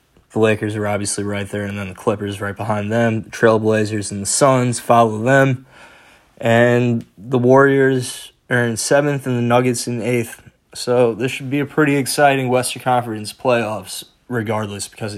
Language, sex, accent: English, male, American